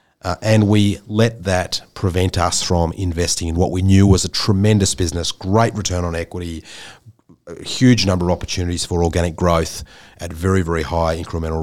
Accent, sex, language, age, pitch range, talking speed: Australian, male, English, 40-59, 80-105 Hz, 175 wpm